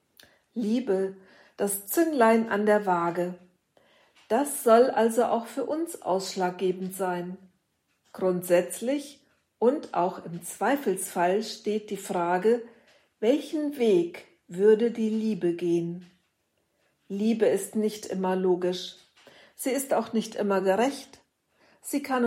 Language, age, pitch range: German, 50-69, 185-235 Hz